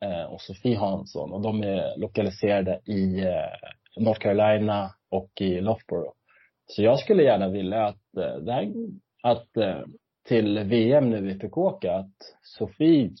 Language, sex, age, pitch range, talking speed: Swedish, male, 30-49, 95-115 Hz, 125 wpm